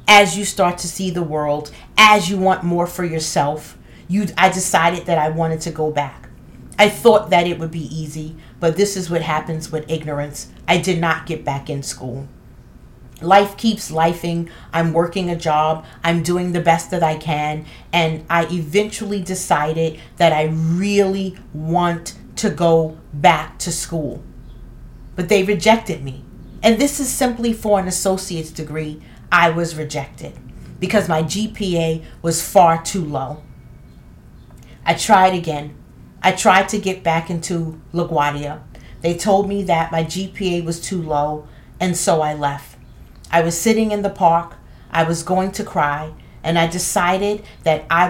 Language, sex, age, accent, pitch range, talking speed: English, female, 40-59, American, 155-185 Hz, 165 wpm